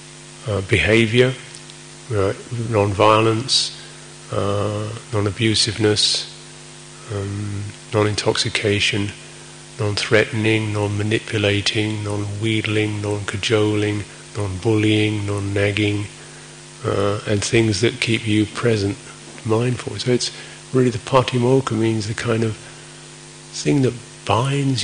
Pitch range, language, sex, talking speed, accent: 105-155 Hz, English, male, 80 wpm, British